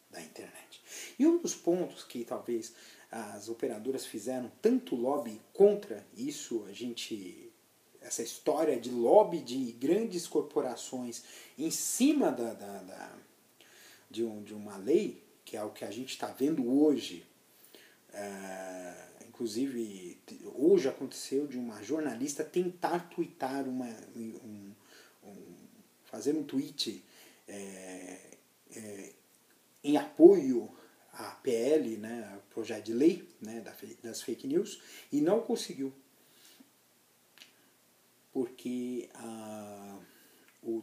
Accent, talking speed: Brazilian, 115 wpm